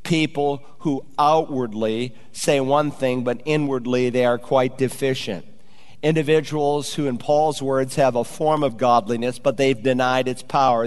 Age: 50-69